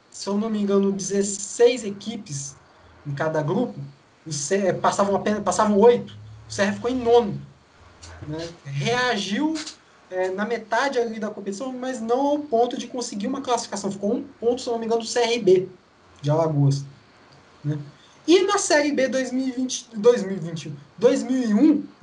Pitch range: 180-250 Hz